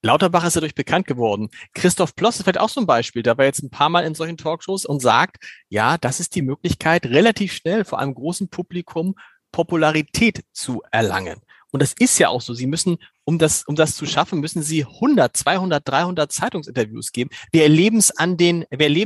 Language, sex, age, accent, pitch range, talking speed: German, male, 40-59, German, 140-180 Hz, 200 wpm